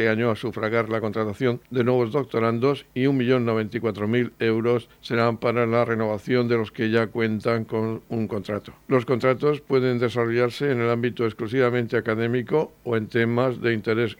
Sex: male